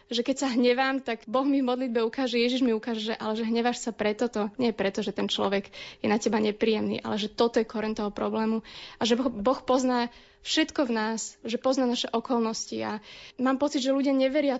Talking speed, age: 210 wpm, 20-39